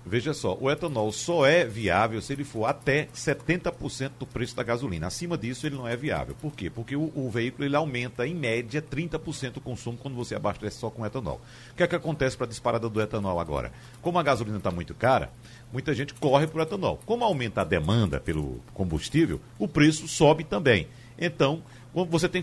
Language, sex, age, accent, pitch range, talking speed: Portuguese, male, 60-79, Brazilian, 120-155 Hz, 205 wpm